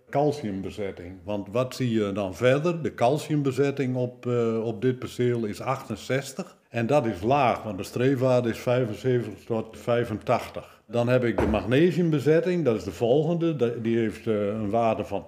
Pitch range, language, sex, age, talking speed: 105-130 Hz, Dutch, male, 60-79, 160 wpm